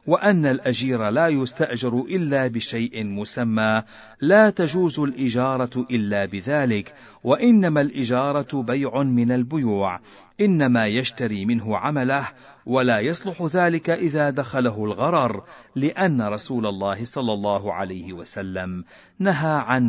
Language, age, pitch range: Arabic, 50-69, 105-155 Hz